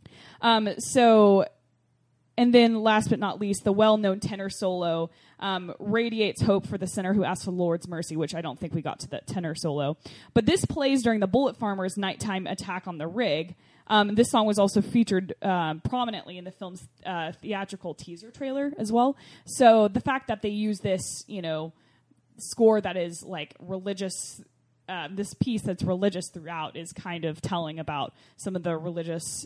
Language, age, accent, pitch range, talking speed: English, 20-39, American, 175-225 Hz, 185 wpm